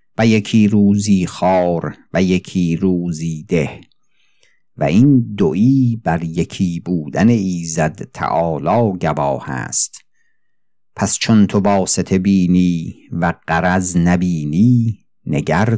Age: 50-69